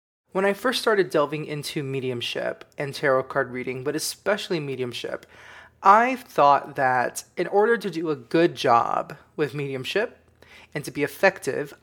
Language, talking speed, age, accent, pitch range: English, 150 wpm, 20-39, American, 145-185 Hz